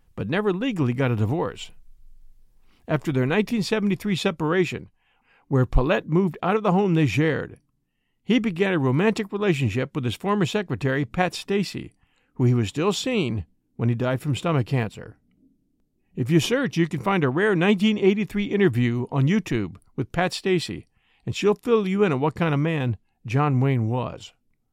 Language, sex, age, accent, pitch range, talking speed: English, male, 50-69, American, 130-200 Hz, 165 wpm